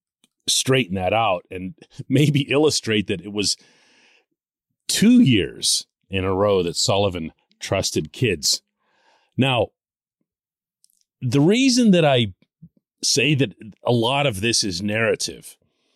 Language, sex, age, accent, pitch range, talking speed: English, male, 40-59, American, 105-165 Hz, 115 wpm